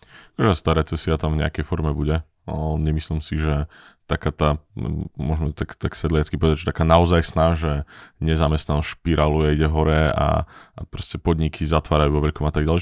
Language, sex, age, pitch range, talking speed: Slovak, male, 20-39, 75-85 Hz, 185 wpm